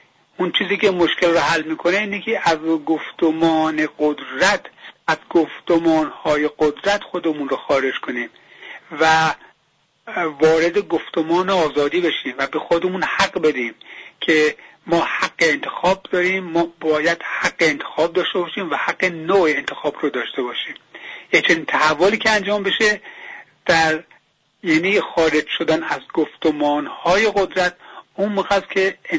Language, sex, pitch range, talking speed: English, male, 155-195 Hz, 135 wpm